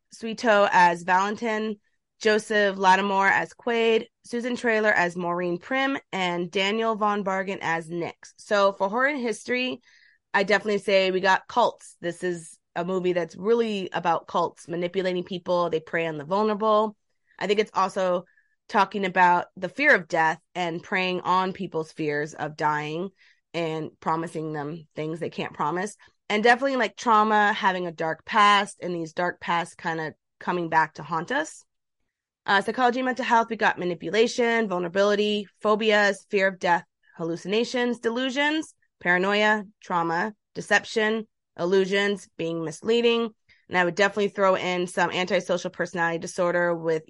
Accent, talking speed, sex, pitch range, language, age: American, 150 wpm, female, 170-215 Hz, English, 20-39